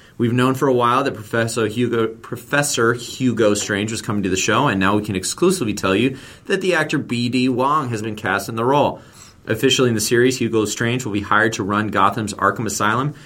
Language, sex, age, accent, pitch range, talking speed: English, male, 30-49, American, 105-125 Hz, 215 wpm